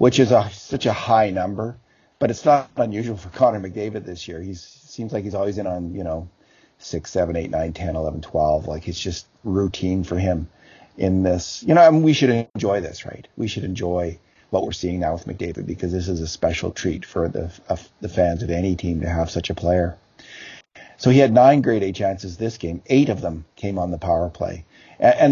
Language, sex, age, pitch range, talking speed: English, male, 50-69, 85-115 Hz, 225 wpm